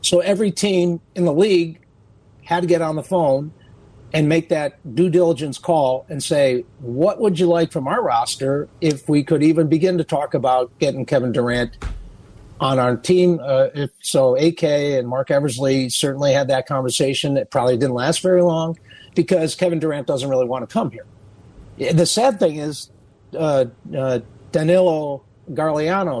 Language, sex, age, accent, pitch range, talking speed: English, male, 50-69, American, 130-170 Hz, 170 wpm